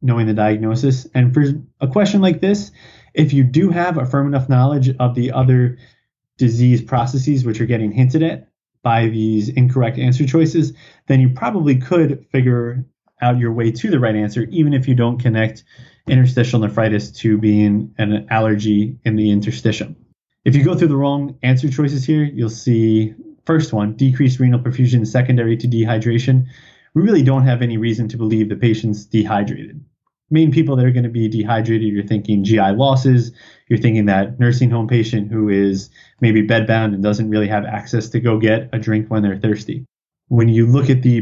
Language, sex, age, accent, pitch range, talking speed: English, male, 30-49, American, 110-135 Hz, 185 wpm